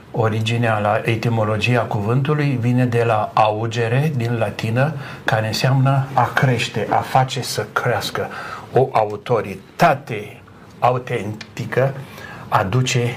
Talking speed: 100 wpm